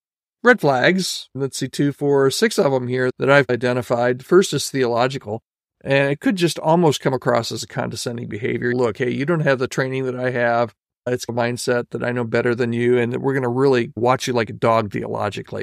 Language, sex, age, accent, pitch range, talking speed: English, male, 50-69, American, 125-150 Hz, 220 wpm